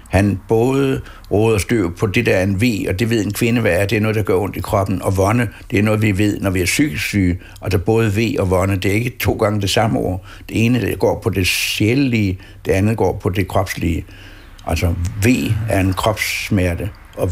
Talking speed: 245 wpm